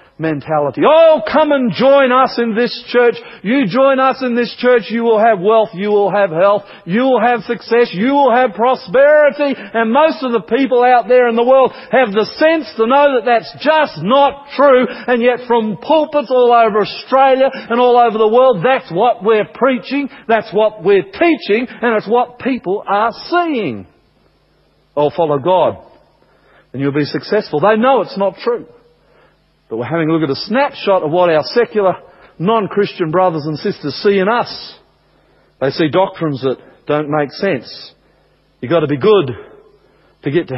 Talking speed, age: 180 wpm, 50-69